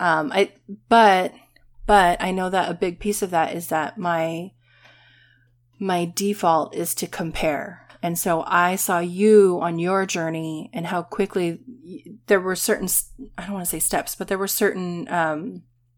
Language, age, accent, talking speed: English, 30-49, American, 170 wpm